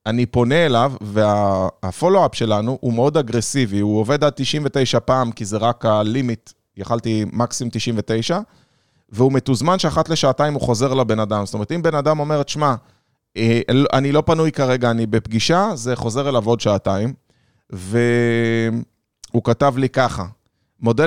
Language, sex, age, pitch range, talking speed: Hebrew, male, 30-49, 115-150 Hz, 145 wpm